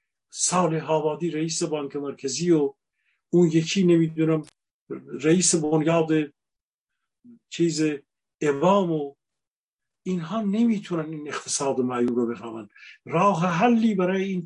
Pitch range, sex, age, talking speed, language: 155-190 Hz, male, 50-69, 105 wpm, Persian